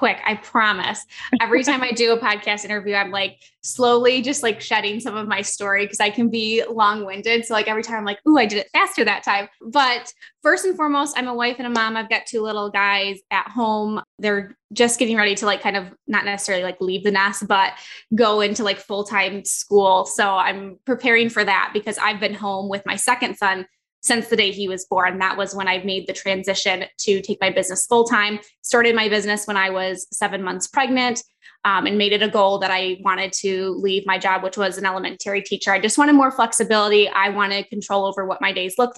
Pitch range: 195-230 Hz